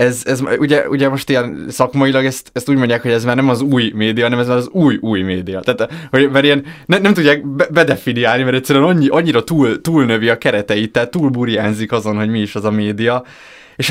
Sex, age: male, 20-39